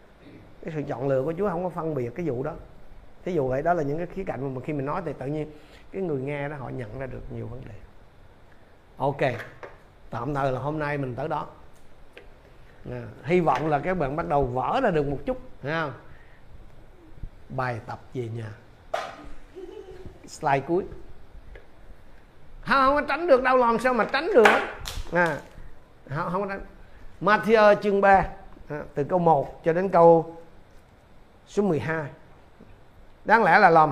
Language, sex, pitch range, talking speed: Vietnamese, male, 130-205 Hz, 175 wpm